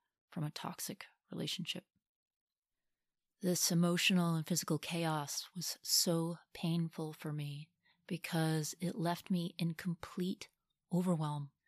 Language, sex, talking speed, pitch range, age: English, female, 110 wpm, 155-175 Hz, 30-49